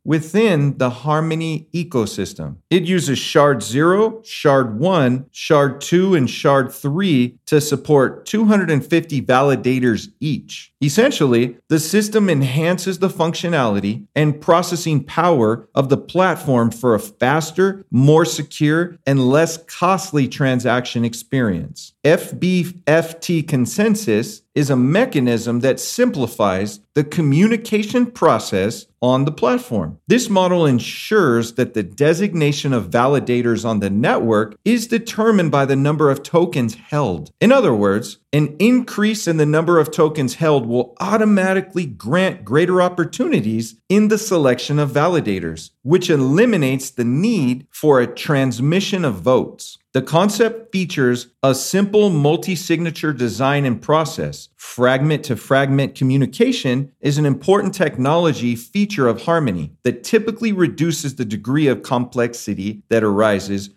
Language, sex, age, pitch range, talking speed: English, male, 40-59, 125-175 Hz, 125 wpm